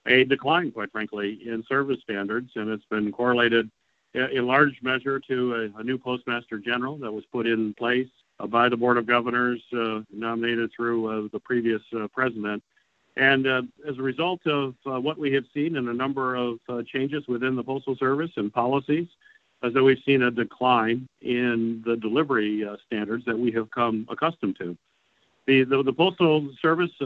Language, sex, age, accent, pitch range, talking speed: English, male, 50-69, American, 115-135 Hz, 180 wpm